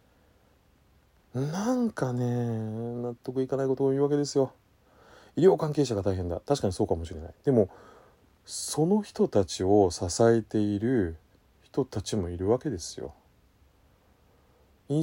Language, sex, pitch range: Japanese, male, 90-115 Hz